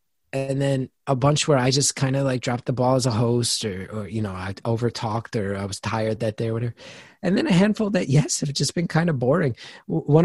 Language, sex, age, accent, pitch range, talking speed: English, male, 30-49, American, 115-155 Hz, 250 wpm